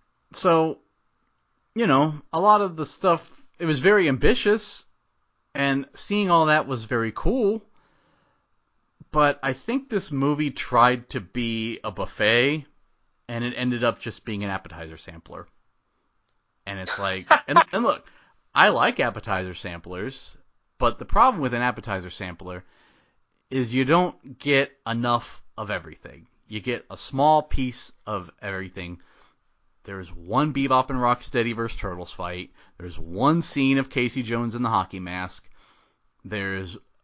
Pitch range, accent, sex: 100-140 Hz, American, male